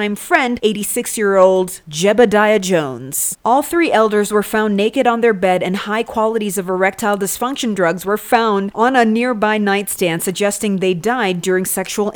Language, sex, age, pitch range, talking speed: English, female, 30-49, 190-245 Hz, 165 wpm